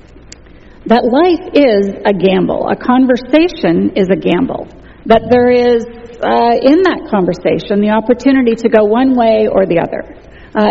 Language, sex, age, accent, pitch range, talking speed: English, female, 50-69, American, 210-275 Hz, 150 wpm